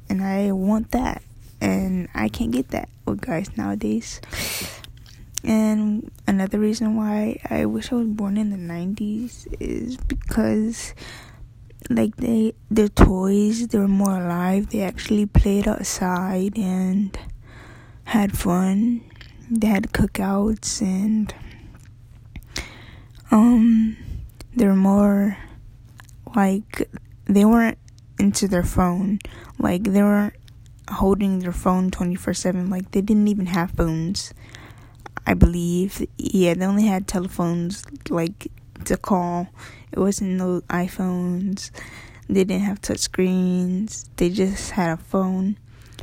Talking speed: 120 wpm